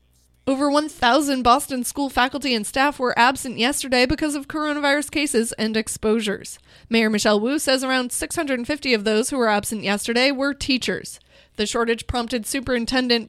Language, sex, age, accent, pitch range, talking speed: English, female, 20-39, American, 220-270 Hz, 155 wpm